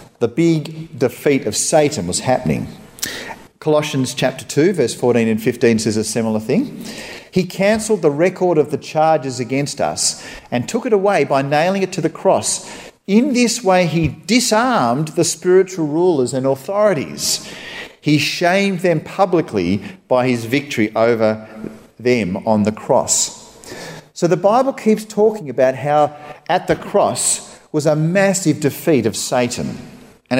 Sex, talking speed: male, 150 wpm